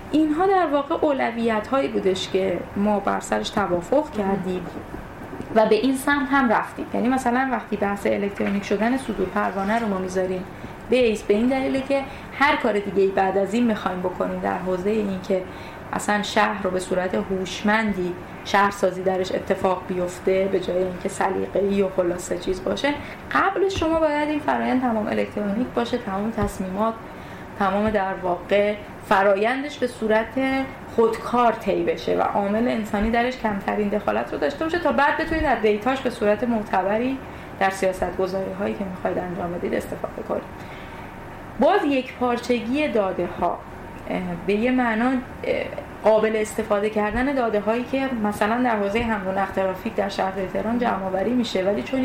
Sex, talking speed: female, 155 wpm